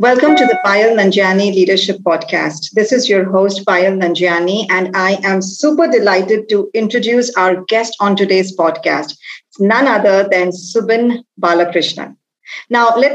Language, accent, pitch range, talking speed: English, Indian, 195-235 Hz, 150 wpm